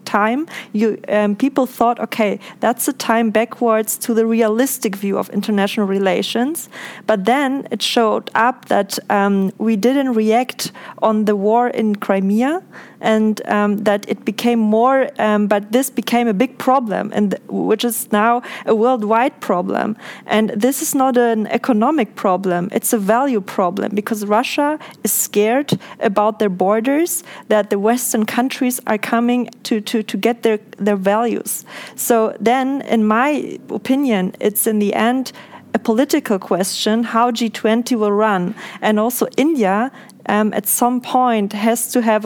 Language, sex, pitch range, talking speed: English, female, 210-245 Hz, 155 wpm